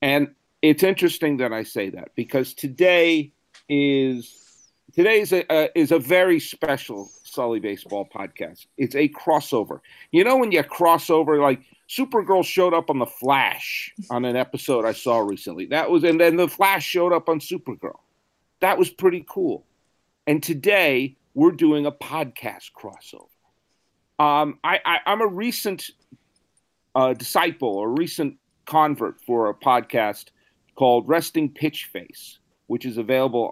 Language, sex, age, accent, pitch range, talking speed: English, male, 50-69, American, 125-180 Hz, 150 wpm